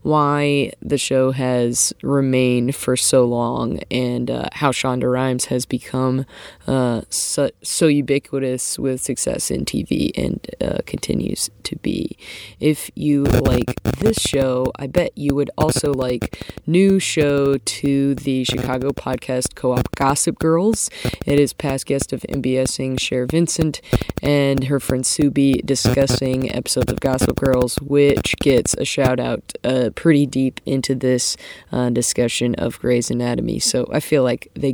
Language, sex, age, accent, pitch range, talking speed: English, female, 20-39, American, 125-145 Hz, 145 wpm